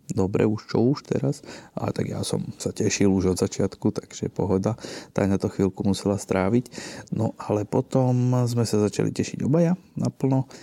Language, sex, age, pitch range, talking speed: Slovak, male, 20-39, 95-115 Hz, 175 wpm